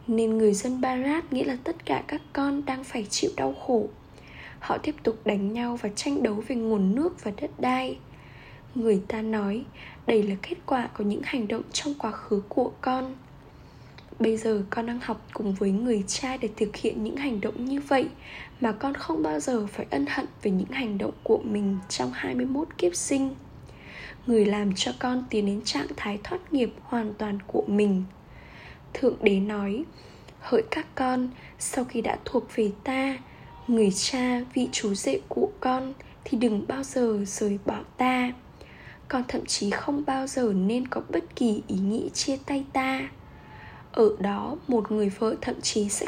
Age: 10-29